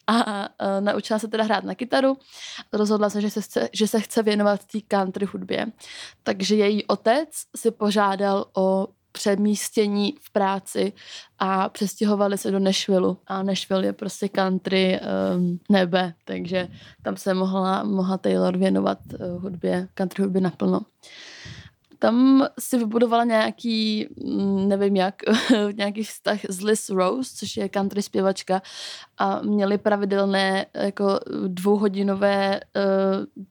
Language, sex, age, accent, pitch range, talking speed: Czech, female, 20-39, native, 190-210 Hz, 130 wpm